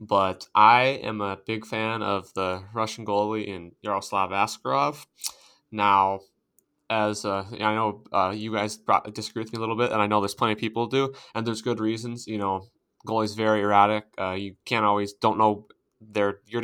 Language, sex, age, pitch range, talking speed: English, male, 20-39, 105-115 Hz, 190 wpm